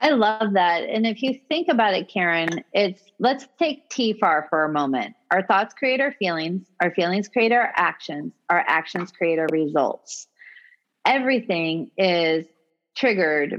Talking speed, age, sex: 155 wpm, 30-49, female